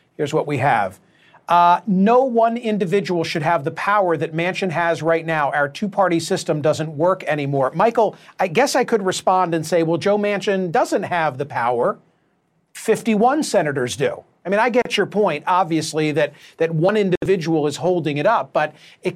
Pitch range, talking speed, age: 165-210 Hz, 180 wpm, 40-59